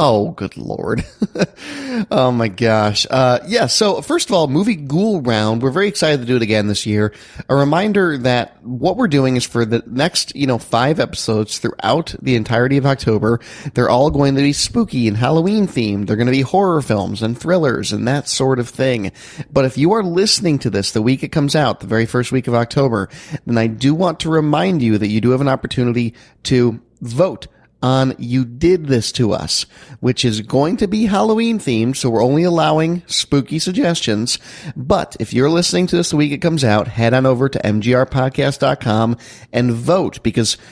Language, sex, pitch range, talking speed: English, male, 115-155 Hz, 200 wpm